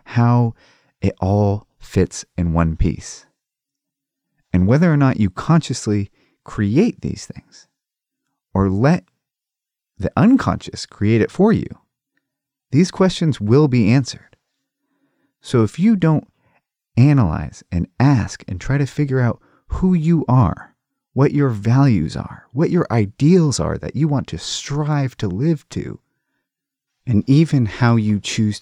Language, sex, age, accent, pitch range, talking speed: English, male, 30-49, American, 100-140 Hz, 135 wpm